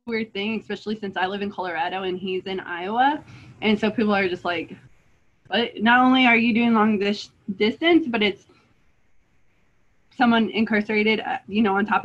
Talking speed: 175 wpm